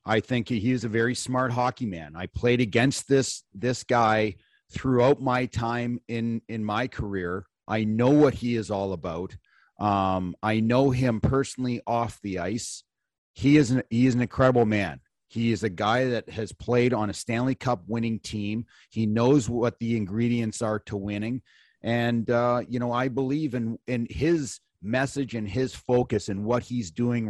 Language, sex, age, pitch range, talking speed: English, male, 40-59, 105-120 Hz, 180 wpm